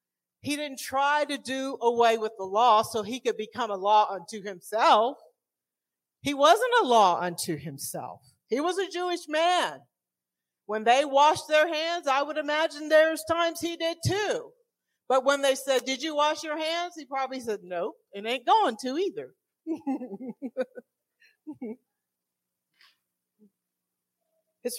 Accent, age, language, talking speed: American, 50-69, English, 145 wpm